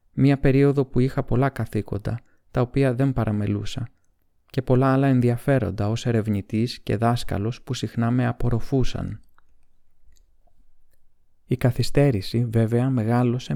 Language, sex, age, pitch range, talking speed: Greek, male, 20-39, 110-130 Hz, 115 wpm